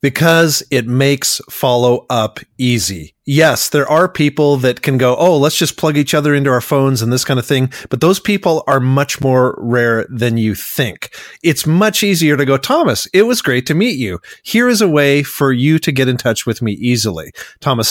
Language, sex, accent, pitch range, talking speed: English, male, American, 120-155 Hz, 210 wpm